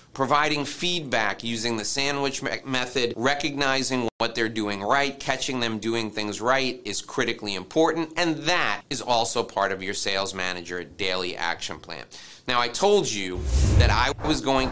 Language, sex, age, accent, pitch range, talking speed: English, male, 30-49, American, 110-135 Hz, 160 wpm